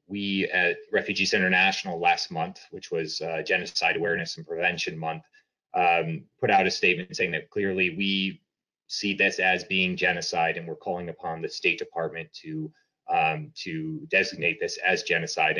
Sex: male